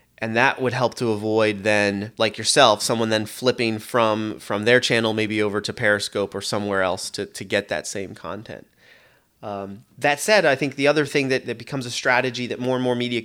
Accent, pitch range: American, 110-125 Hz